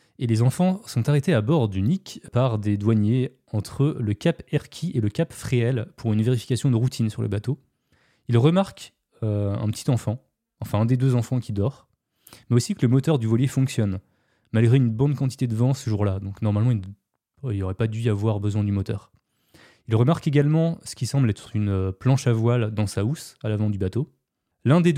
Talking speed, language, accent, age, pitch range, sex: 215 wpm, French, French, 20-39, 105-130 Hz, male